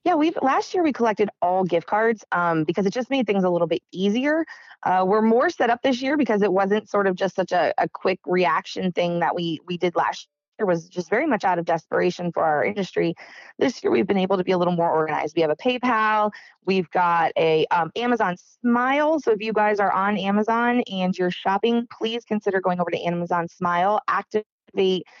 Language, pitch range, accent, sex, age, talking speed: English, 175-215 Hz, American, female, 20-39, 225 wpm